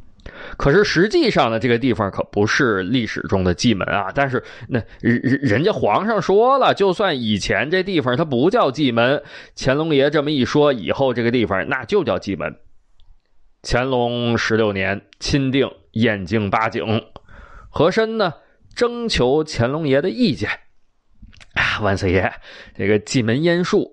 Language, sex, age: Chinese, male, 20-39